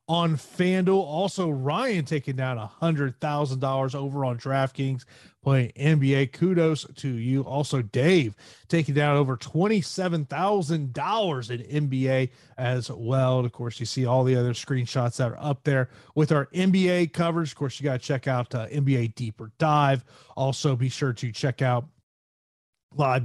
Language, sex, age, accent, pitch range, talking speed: English, male, 30-49, American, 125-160 Hz, 150 wpm